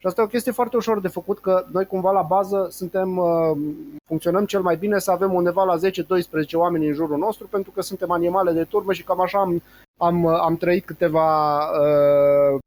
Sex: male